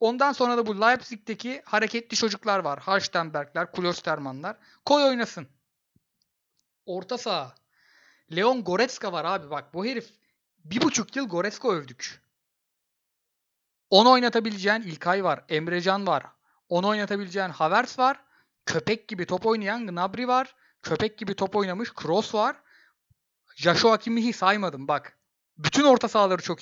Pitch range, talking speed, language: 175-235 Hz, 130 wpm, Turkish